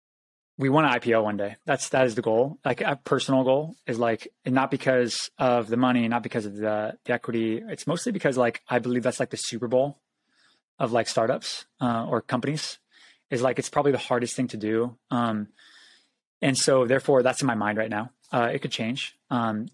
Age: 20-39